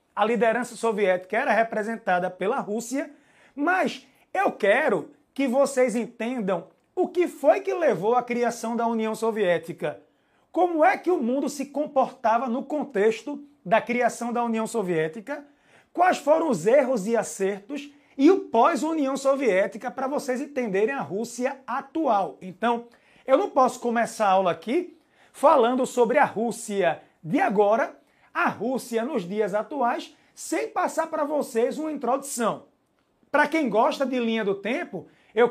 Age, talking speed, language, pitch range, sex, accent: 30-49, 145 wpm, Portuguese, 215-280 Hz, male, Brazilian